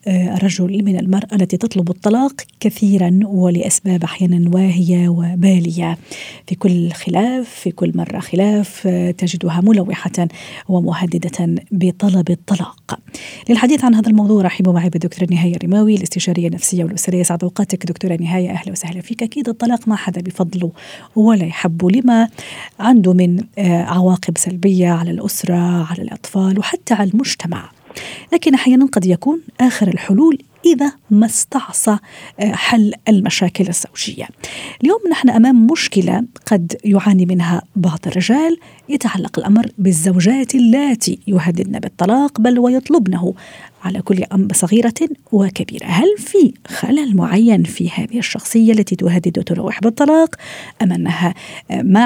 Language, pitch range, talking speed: Arabic, 180-230 Hz, 125 wpm